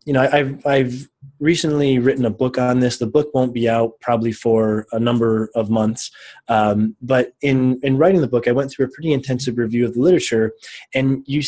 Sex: male